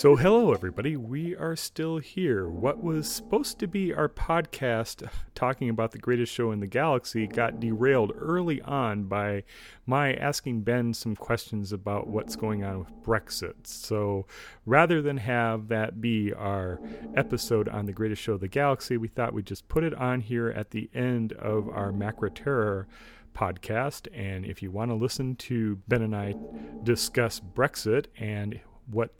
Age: 40-59